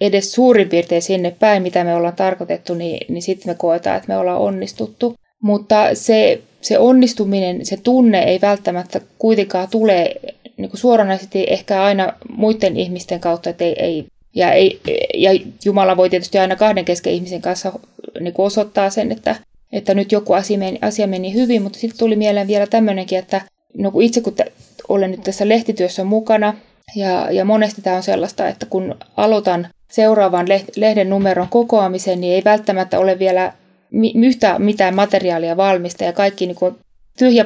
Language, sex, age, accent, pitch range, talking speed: Finnish, female, 20-39, native, 185-215 Hz, 150 wpm